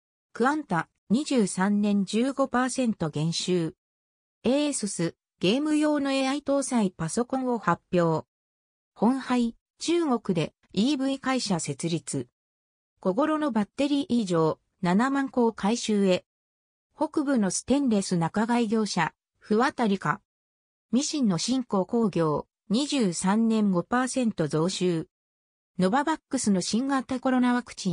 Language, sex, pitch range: Japanese, female, 165-255 Hz